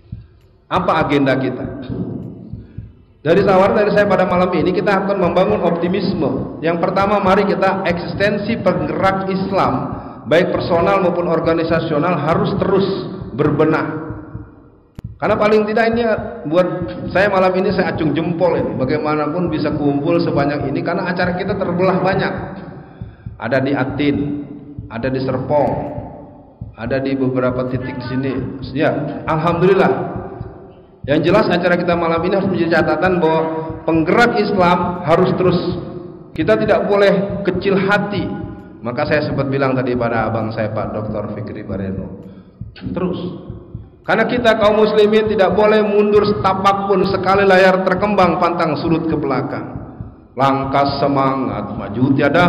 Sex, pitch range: male, 135-190 Hz